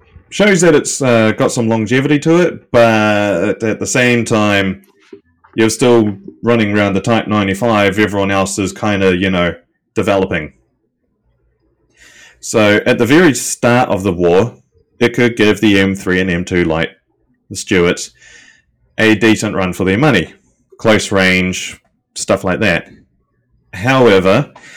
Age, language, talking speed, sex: 20-39, English, 145 wpm, male